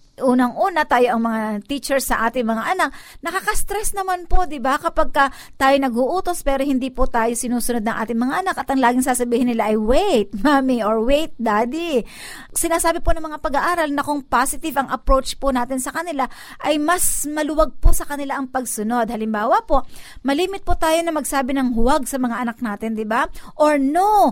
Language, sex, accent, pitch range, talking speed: Filipino, female, native, 245-320 Hz, 190 wpm